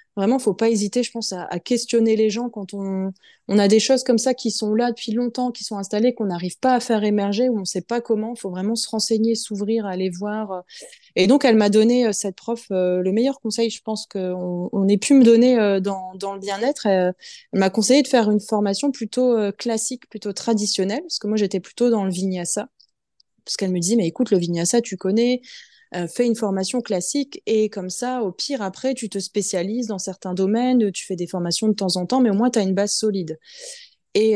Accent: French